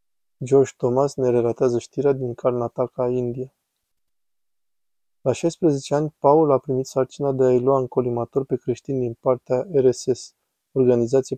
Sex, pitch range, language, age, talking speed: male, 125-135 Hz, Romanian, 20-39, 135 wpm